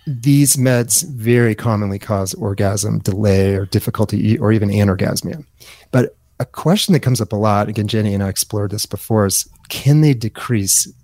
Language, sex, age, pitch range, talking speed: English, male, 30-49, 100-115 Hz, 170 wpm